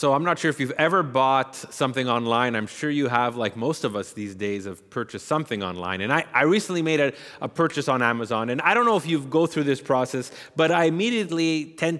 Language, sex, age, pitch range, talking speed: English, male, 30-49, 120-155 Hz, 240 wpm